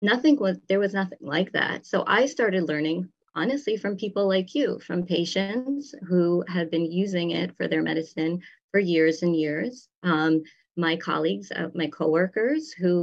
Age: 30-49